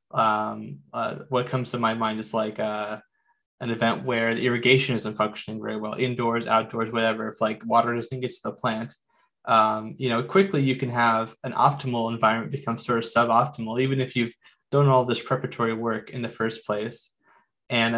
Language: English